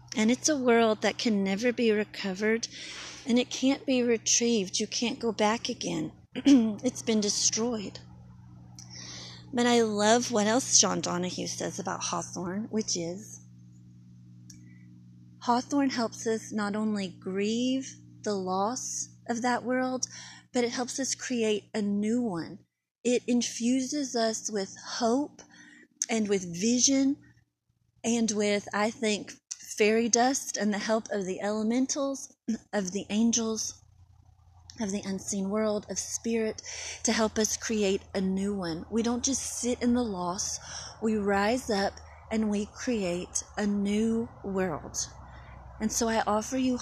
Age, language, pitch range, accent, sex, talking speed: 30-49, English, 195-240 Hz, American, female, 140 wpm